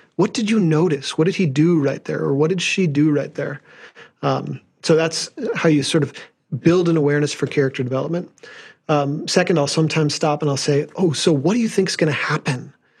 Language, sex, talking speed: English, male, 220 wpm